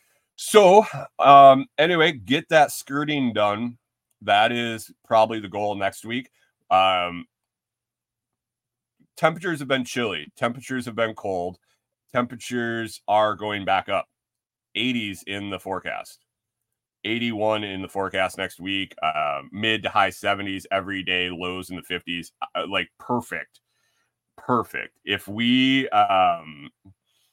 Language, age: English, 30-49